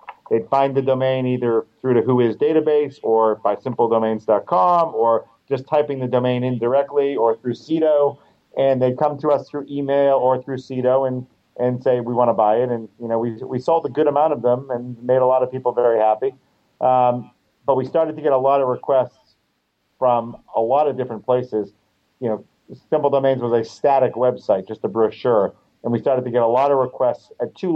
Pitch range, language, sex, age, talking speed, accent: 115-135 Hz, English, male, 40-59, 210 wpm, American